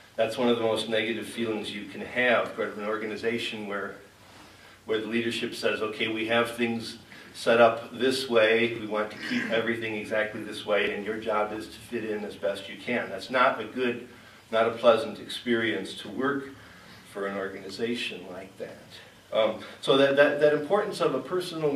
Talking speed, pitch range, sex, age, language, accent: 190 wpm, 110-140 Hz, male, 50-69, English, American